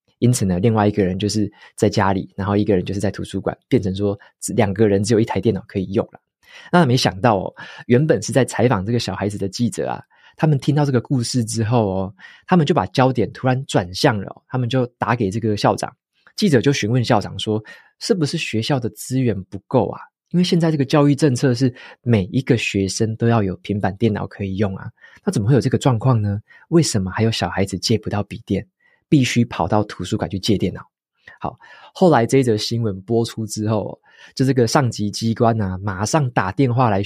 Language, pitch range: Chinese, 100-130 Hz